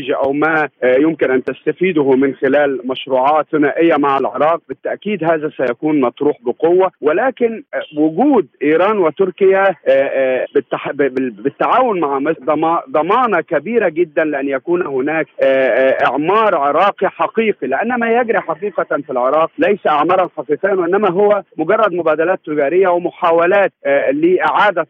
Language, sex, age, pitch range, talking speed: Arabic, male, 40-59, 145-195 Hz, 115 wpm